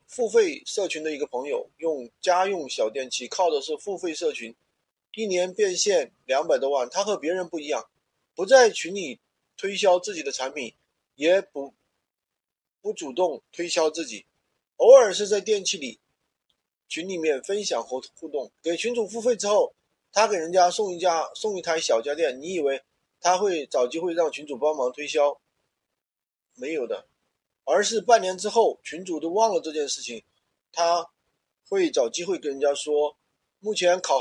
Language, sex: Chinese, male